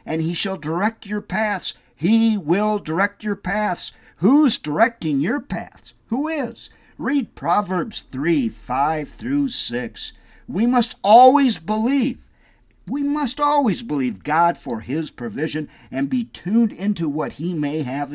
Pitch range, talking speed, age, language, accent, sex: 140-230 Hz, 140 wpm, 50-69, English, American, male